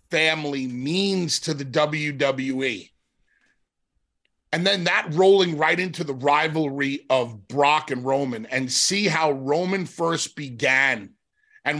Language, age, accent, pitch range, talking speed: English, 40-59, American, 145-190 Hz, 120 wpm